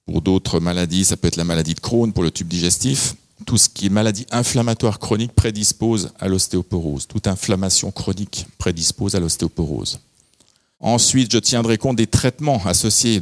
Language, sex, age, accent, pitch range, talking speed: French, male, 50-69, French, 90-110 Hz, 170 wpm